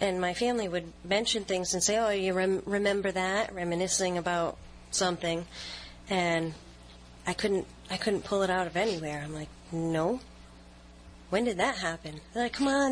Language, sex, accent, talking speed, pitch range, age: English, female, American, 170 wpm, 160-185 Hz, 30-49